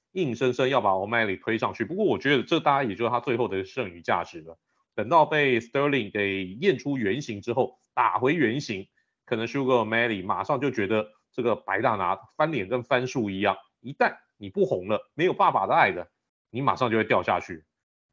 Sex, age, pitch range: male, 30-49, 100-145 Hz